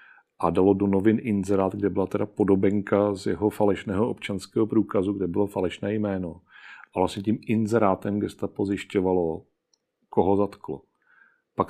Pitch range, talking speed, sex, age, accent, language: 90-100 Hz, 140 wpm, male, 40-59, native, Czech